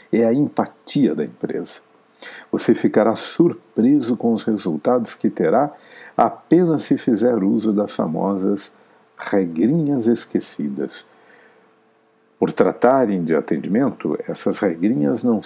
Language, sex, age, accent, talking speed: Portuguese, male, 60-79, Brazilian, 110 wpm